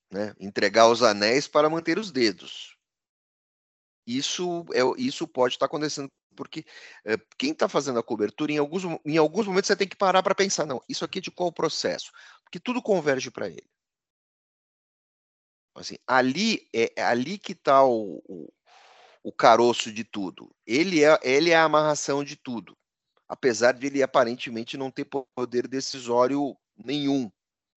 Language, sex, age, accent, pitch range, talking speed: Portuguese, male, 40-59, Brazilian, 110-155 Hz, 160 wpm